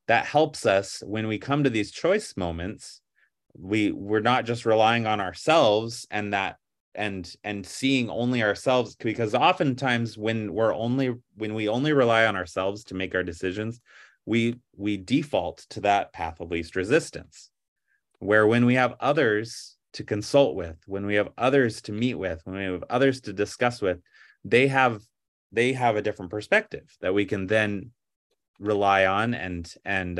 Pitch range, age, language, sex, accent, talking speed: 95-130 Hz, 30-49, English, male, American, 170 wpm